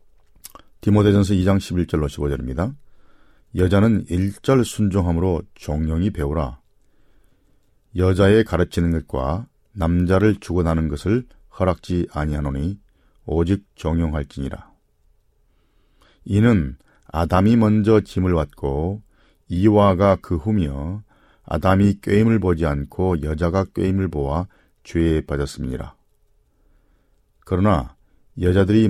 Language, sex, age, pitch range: Korean, male, 40-59, 80-100 Hz